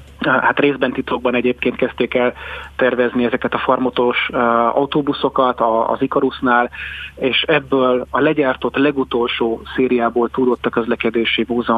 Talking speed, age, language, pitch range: 125 wpm, 30-49, Hungarian, 115-130 Hz